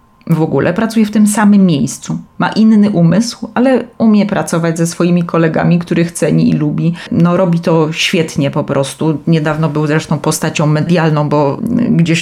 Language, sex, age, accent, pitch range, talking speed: Polish, female, 30-49, native, 155-195 Hz, 160 wpm